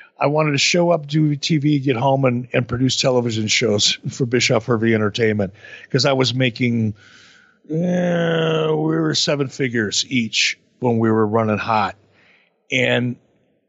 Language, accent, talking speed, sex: English, American, 145 wpm, male